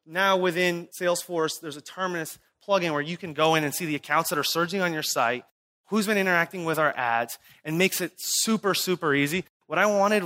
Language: English